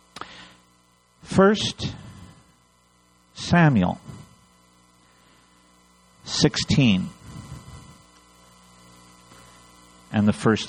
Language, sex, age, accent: English, male, 50-69, American